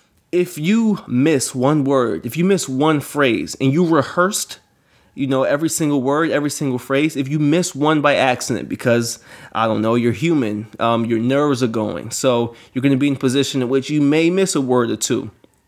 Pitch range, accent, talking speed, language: 125-145 Hz, American, 210 wpm, English